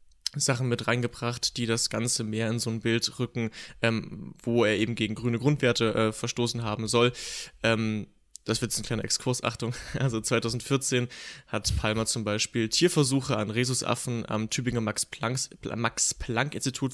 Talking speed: 150 wpm